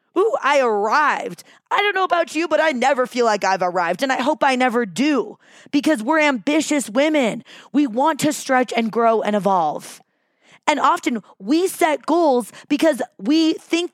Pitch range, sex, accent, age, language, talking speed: 235-305 Hz, female, American, 20-39, English, 175 wpm